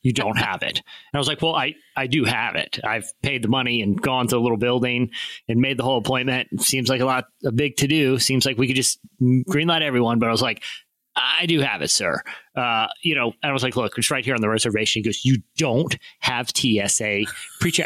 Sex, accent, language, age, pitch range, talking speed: male, American, English, 30-49, 120-155 Hz, 255 wpm